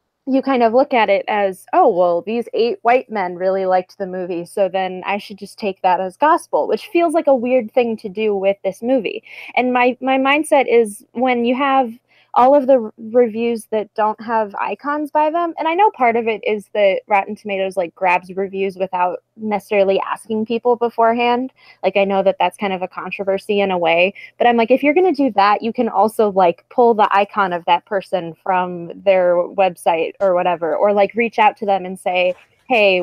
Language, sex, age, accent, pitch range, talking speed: English, female, 20-39, American, 195-245 Hz, 215 wpm